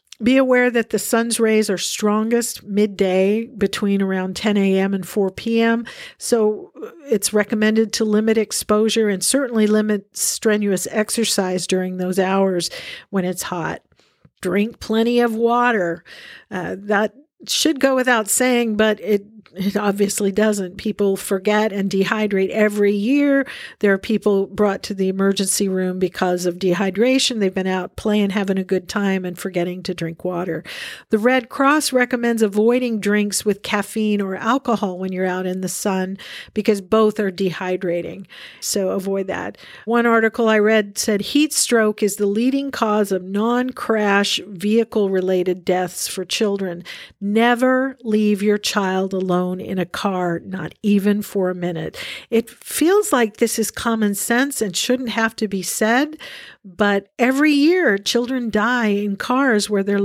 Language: English